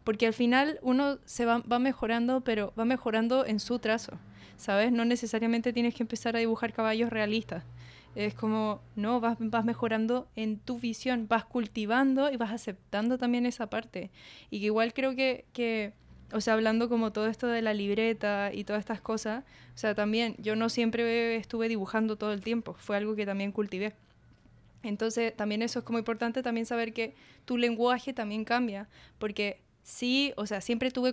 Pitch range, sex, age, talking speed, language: 210-235 Hz, female, 10-29, 185 wpm, Spanish